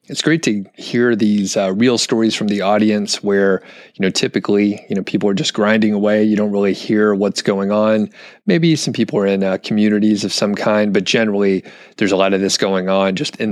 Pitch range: 100-120 Hz